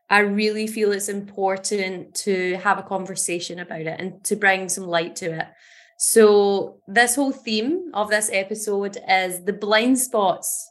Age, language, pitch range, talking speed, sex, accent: 20-39, English, 190-230 Hz, 160 wpm, female, British